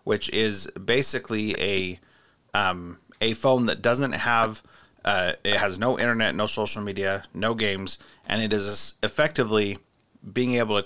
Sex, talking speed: male, 150 wpm